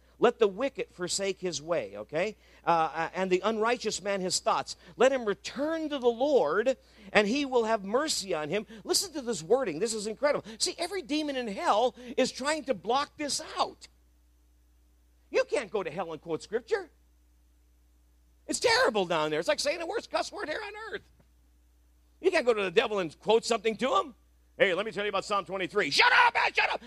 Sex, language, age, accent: male, English, 50-69, American